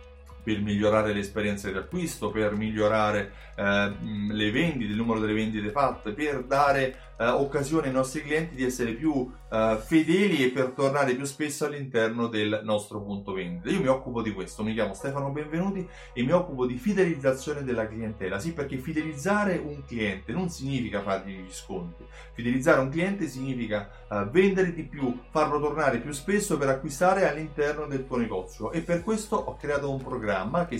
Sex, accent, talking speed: male, native, 175 wpm